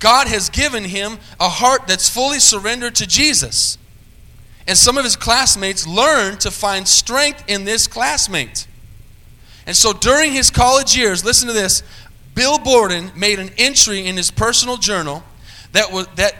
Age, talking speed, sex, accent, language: 30-49, 155 wpm, male, American, English